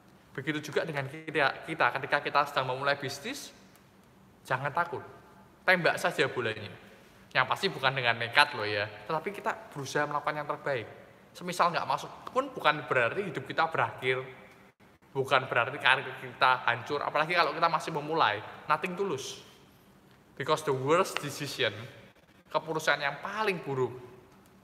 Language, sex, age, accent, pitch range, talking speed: Indonesian, male, 20-39, native, 130-165 Hz, 140 wpm